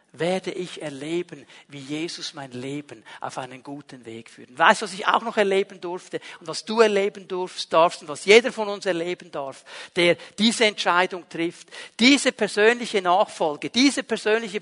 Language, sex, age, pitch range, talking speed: German, male, 50-69, 180-235 Hz, 175 wpm